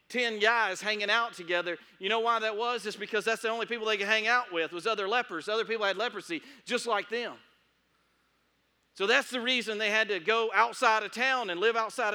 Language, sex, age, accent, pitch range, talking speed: English, male, 40-59, American, 175-255 Hz, 220 wpm